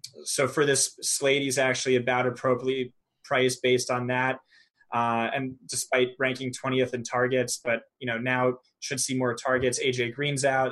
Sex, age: male, 20-39